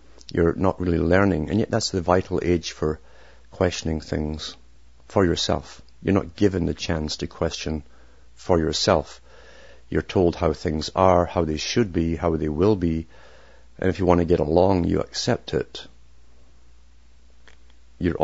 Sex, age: male, 50-69